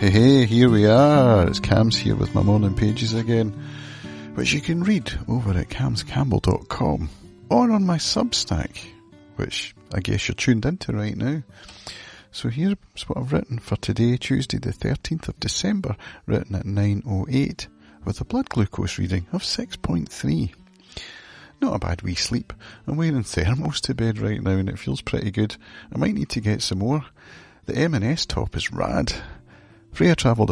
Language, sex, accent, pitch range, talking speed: English, male, British, 95-130 Hz, 165 wpm